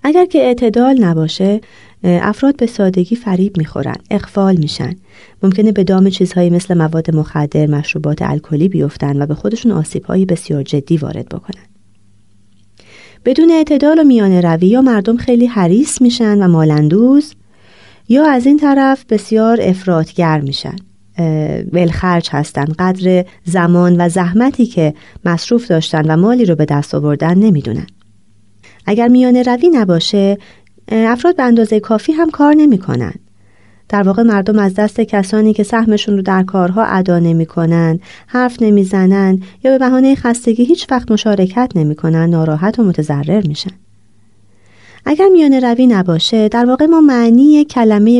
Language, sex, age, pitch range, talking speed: Persian, female, 30-49, 160-235 Hz, 140 wpm